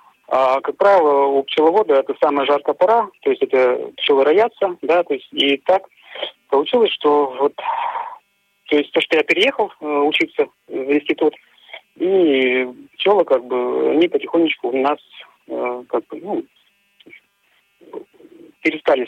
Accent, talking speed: native, 135 wpm